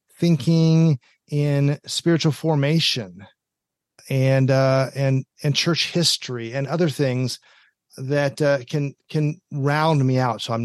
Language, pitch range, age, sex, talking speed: English, 115-145 Hz, 40-59, male, 125 wpm